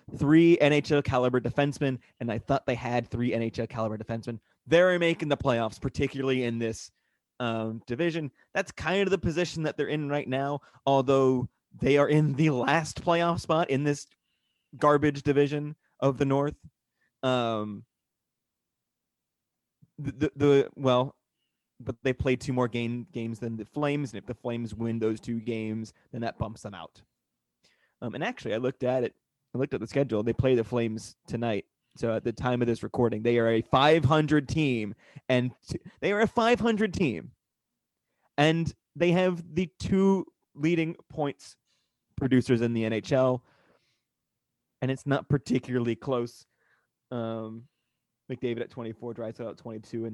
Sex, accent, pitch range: male, American, 115-145 Hz